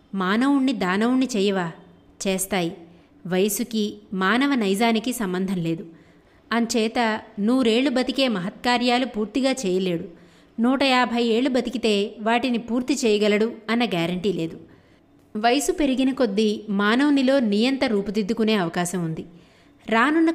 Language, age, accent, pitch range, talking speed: Telugu, 20-39, native, 185-250 Hz, 95 wpm